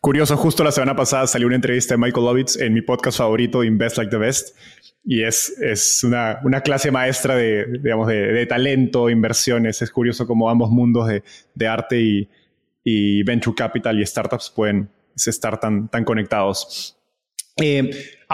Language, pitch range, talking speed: Spanish, 115-145 Hz, 170 wpm